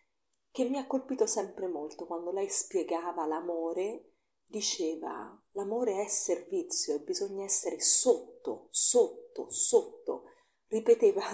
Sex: female